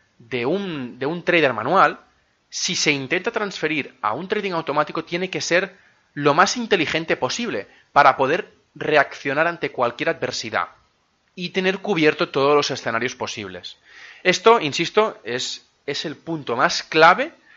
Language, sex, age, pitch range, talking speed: Spanish, male, 20-39, 125-185 Hz, 145 wpm